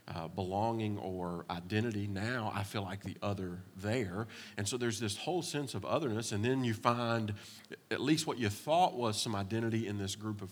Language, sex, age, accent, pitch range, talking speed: English, male, 40-59, American, 100-120 Hz, 200 wpm